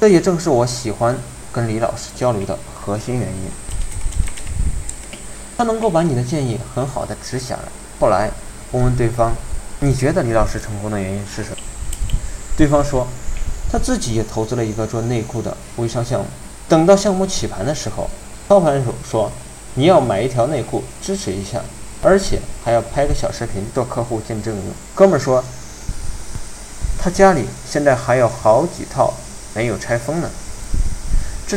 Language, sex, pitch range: Chinese, male, 105-135 Hz